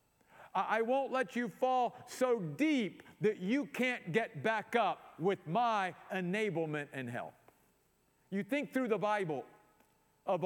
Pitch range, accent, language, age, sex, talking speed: 190-255 Hz, American, English, 50-69, male, 140 wpm